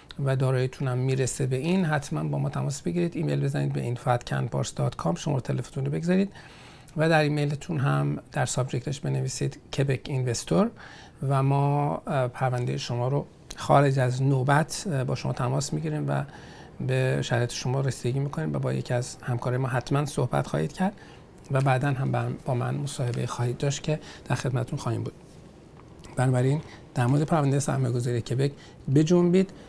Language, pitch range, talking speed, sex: Persian, 125-160 Hz, 155 wpm, male